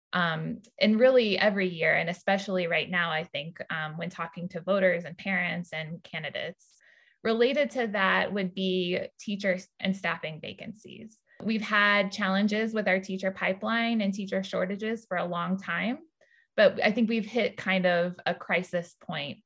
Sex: female